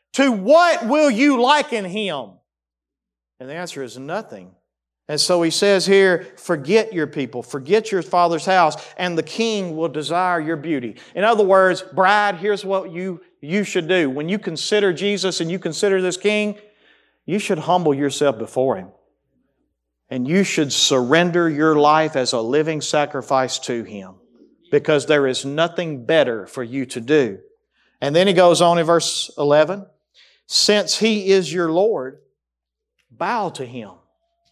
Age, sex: 40-59, male